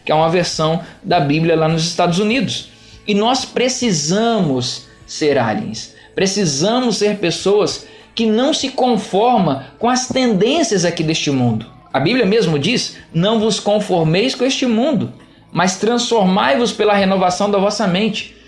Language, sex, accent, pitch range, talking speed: Portuguese, male, Brazilian, 170-230 Hz, 145 wpm